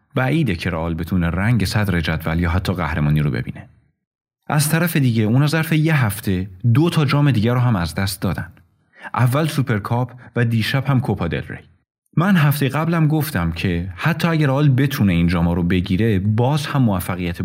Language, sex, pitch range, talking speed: Persian, male, 95-135 Hz, 180 wpm